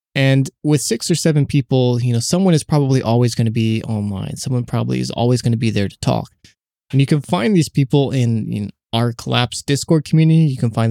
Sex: male